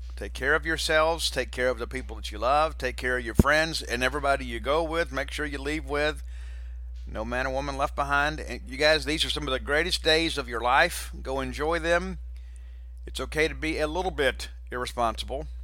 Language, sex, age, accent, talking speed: English, male, 50-69, American, 215 wpm